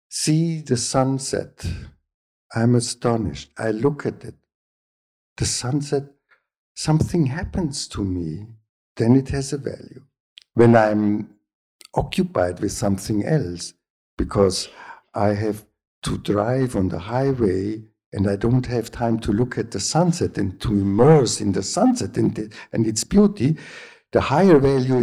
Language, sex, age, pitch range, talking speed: Polish, male, 60-79, 105-155 Hz, 135 wpm